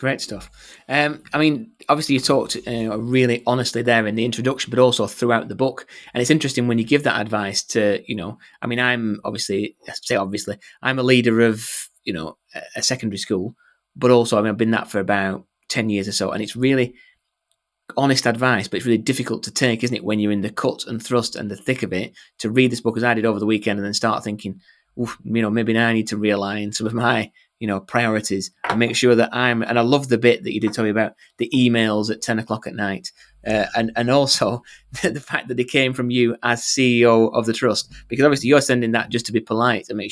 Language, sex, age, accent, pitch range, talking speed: English, male, 20-39, British, 105-125 Hz, 245 wpm